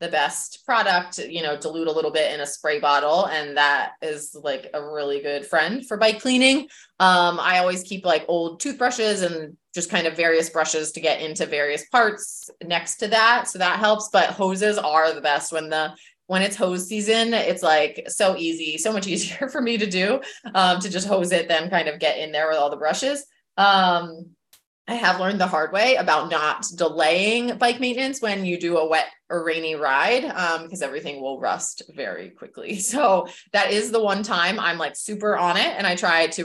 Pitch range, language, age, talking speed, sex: 160-210 Hz, English, 20-39, 210 wpm, female